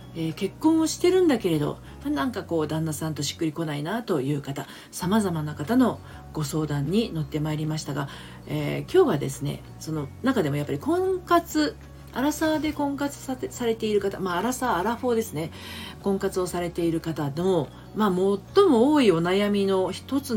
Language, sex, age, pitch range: Japanese, female, 40-59, 140-200 Hz